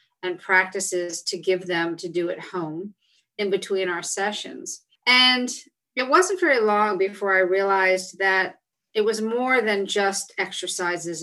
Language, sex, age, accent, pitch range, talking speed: English, female, 40-59, American, 180-215 Hz, 150 wpm